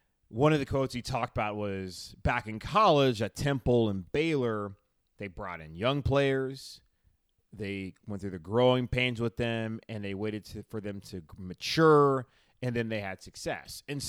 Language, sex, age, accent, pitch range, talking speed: English, male, 30-49, American, 100-125 Hz, 175 wpm